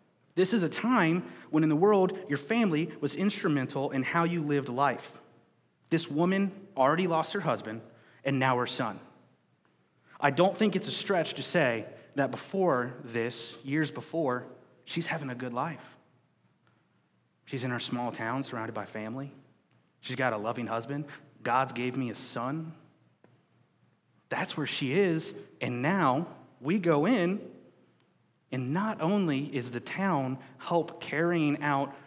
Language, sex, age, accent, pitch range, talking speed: English, male, 30-49, American, 125-165 Hz, 150 wpm